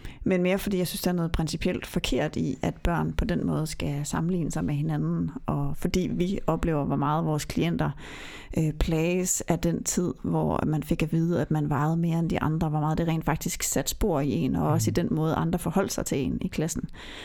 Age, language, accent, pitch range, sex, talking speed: 30-49, Danish, native, 155-190 Hz, female, 235 wpm